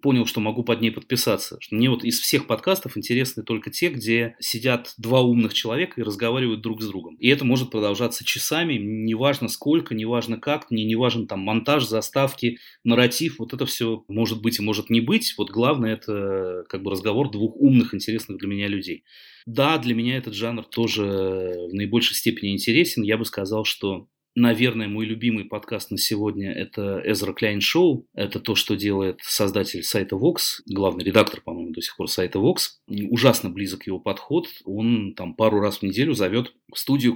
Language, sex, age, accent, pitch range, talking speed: Russian, male, 30-49, native, 105-120 Hz, 185 wpm